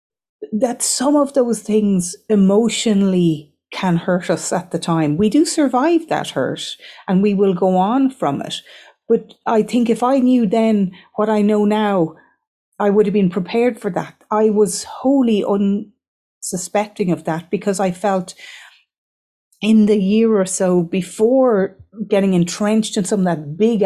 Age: 40-59